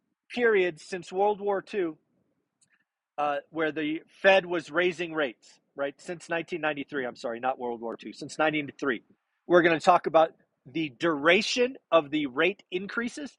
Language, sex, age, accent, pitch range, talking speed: English, male, 40-59, American, 150-195 Hz, 150 wpm